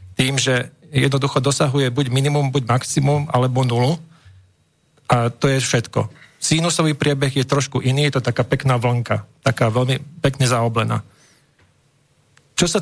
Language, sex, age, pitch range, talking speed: Slovak, male, 40-59, 120-145 Hz, 140 wpm